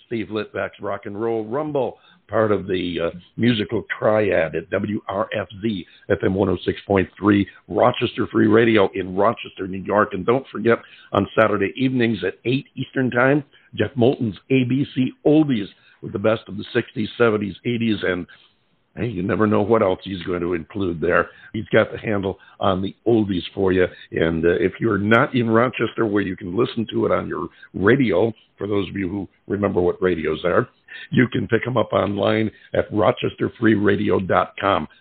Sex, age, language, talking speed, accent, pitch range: male, 60-79, English, 170 wpm, American, 95-115 Hz